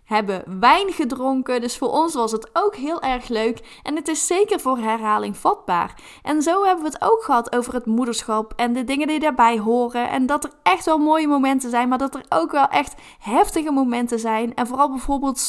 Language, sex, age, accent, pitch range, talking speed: Dutch, female, 10-29, Dutch, 225-290 Hz, 215 wpm